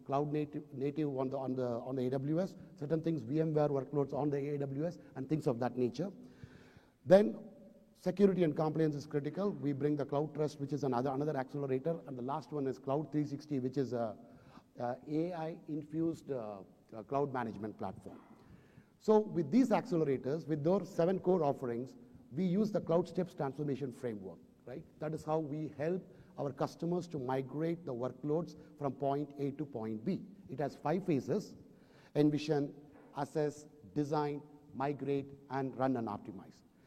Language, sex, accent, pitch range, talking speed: English, male, Indian, 135-165 Hz, 165 wpm